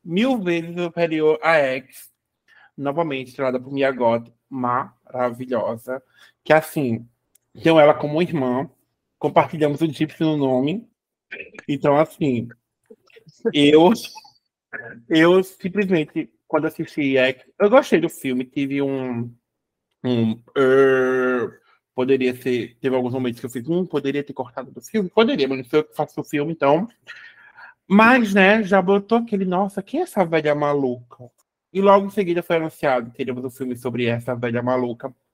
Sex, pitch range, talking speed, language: male, 130-170 Hz, 140 wpm, Portuguese